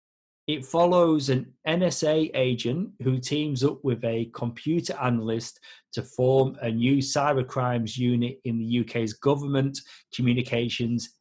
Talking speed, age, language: 125 wpm, 30-49, English